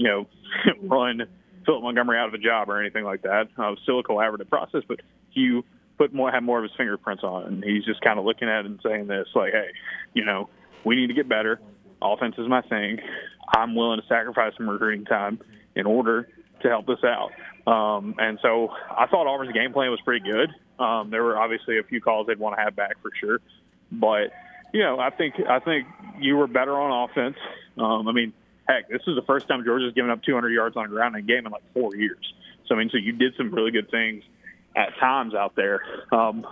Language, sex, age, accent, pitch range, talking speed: English, male, 20-39, American, 110-125 Hz, 235 wpm